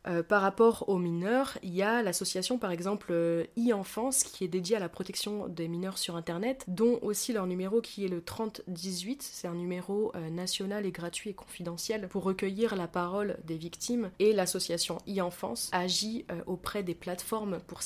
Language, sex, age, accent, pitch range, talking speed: French, female, 20-39, French, 175-205 Hz, 180 wpm